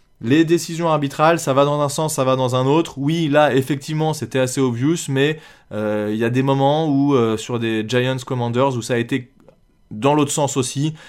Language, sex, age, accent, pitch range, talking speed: French, male, 20-39, French, 120-155 Hz, 210 wpm